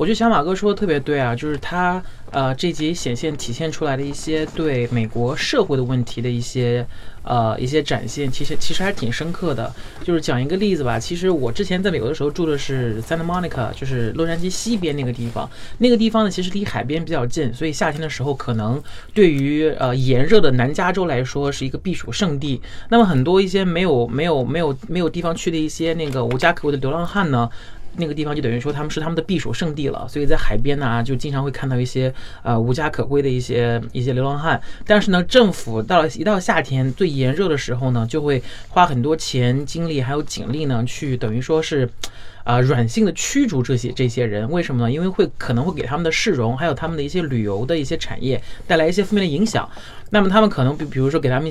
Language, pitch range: Chinese, 125-165 Hz